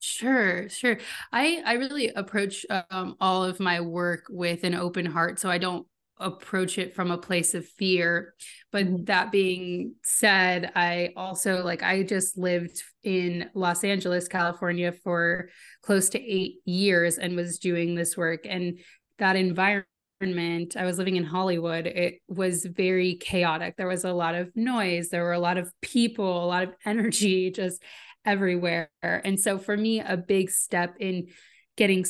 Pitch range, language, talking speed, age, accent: 175-195 Hz, English, 165 wpm, 20-39, American